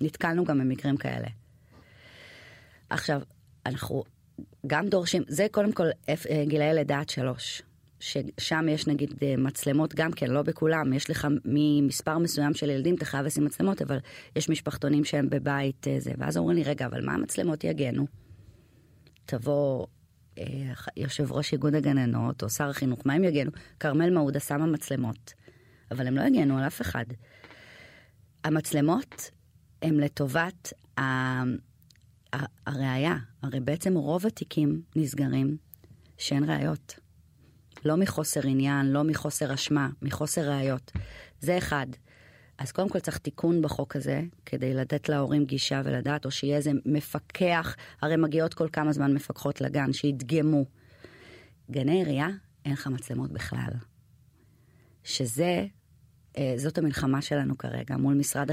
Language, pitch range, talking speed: Hebrew, 125-150 Hz, 130 wpm